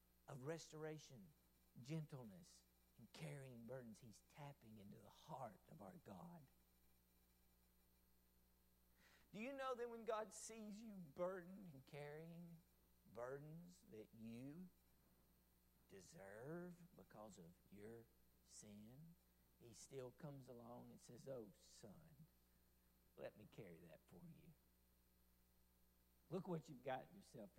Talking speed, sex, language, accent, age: 115 wpm, male, English, American, 50-69